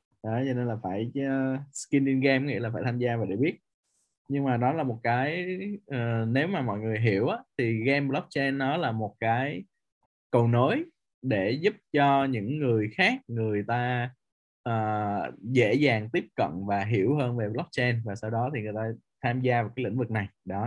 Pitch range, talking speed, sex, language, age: 110-140 Hz, 205 wpm, male, Vietnamese, 20-39